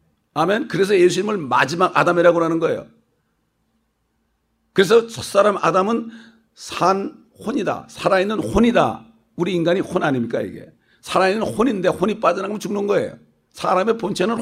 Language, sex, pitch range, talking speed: English, male, 160-200 Hz, 115 wpm